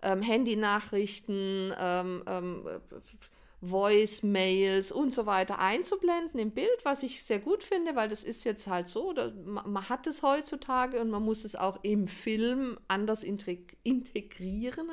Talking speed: 130 wpm